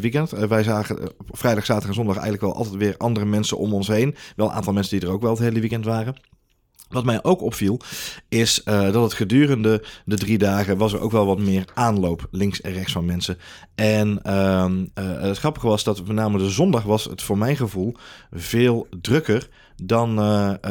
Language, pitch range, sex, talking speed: Dutch, 100-115 Hz, male, 215 wpm